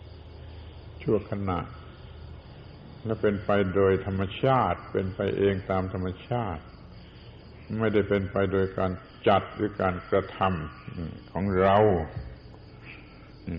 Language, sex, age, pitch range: Thai, male, 70-89, 95-120 Hz